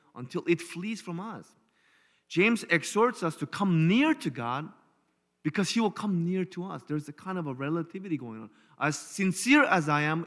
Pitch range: 135-185 Hz